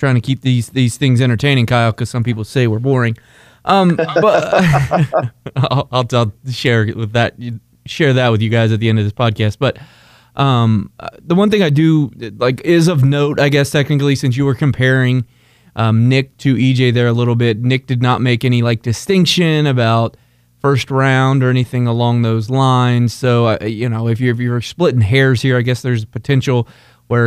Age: 20-39